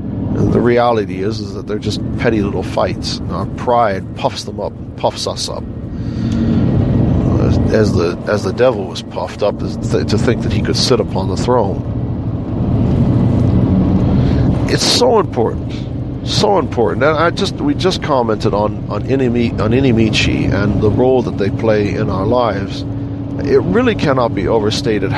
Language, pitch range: English, 110-140 Hz